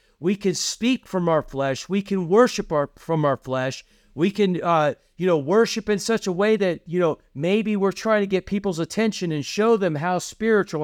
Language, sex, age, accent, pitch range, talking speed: English, male, 50-69, American, 170-215 Hz, 205 wpm